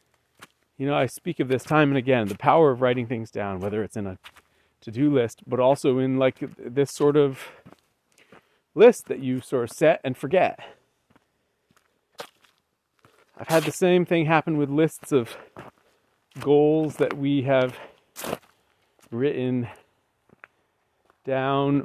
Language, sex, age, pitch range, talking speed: English, male, 40-59, 125-155 Hz, 140 wpm